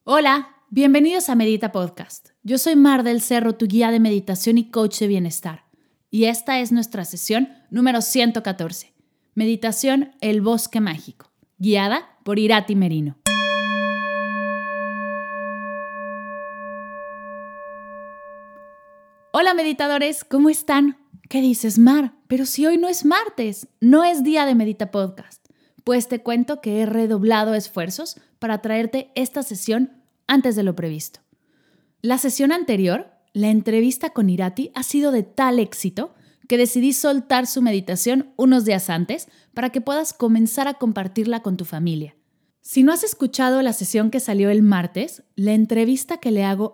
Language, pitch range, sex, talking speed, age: Spanish, 185-260 Hz, female, 145 wpm, 20-39